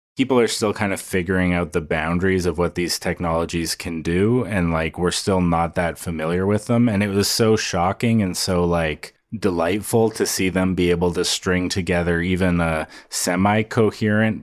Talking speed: 185 wpm